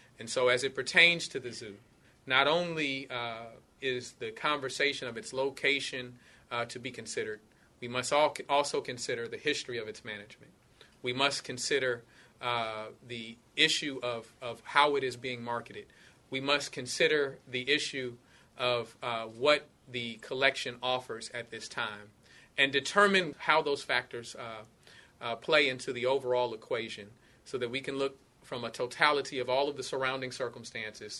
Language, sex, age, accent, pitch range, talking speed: English, male, 30-49, American, 120-145 Hz, 160 wpm